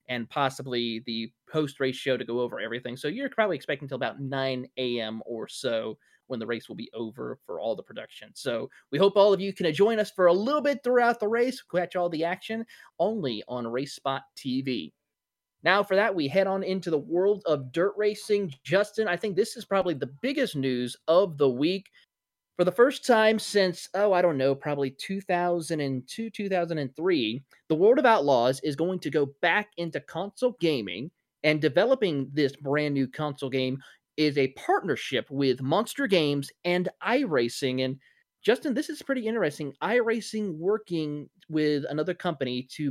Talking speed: 180 wpm